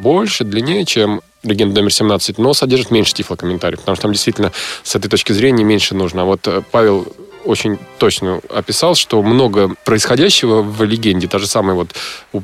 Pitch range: 105-125 Hz